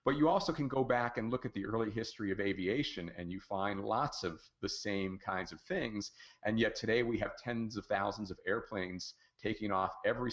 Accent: American